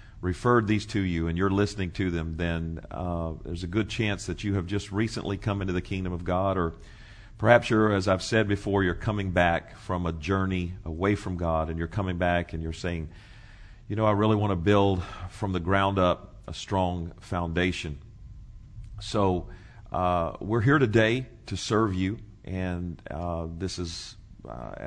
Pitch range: 90-105 Hz